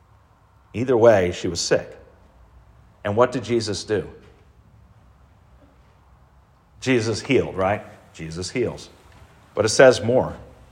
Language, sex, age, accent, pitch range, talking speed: English, male, 50-69, American, 105-145 Hz, 105 wpm